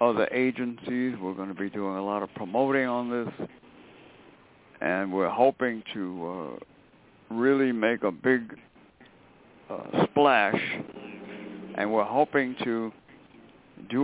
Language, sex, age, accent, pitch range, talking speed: English, male, 60-79, American, 110-145 Hz, 125 wpm